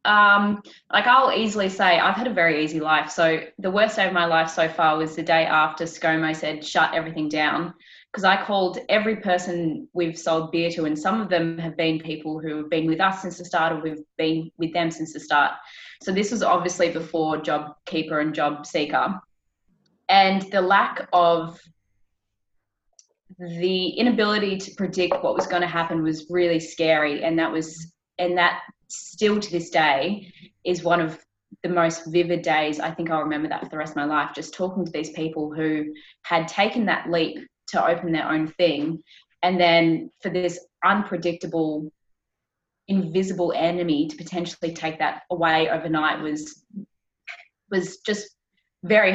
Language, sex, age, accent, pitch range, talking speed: English, female, 20-39, Australian, 160-185 Hz, 180 wpm